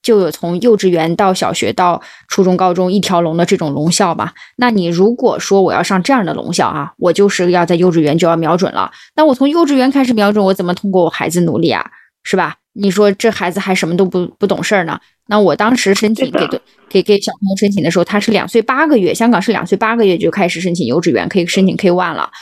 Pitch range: 180-225 Hz